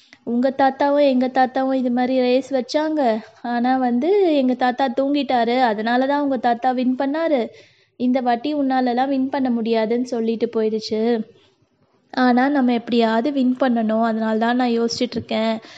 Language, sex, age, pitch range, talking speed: Tamil, female, 20-39, 235-275 Hz, 135 wpm